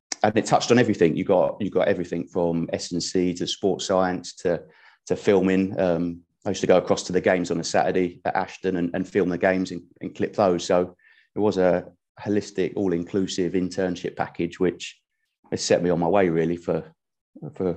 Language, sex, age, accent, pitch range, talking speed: English, male, 30-49, British, 85-95 Hz, 200 wpm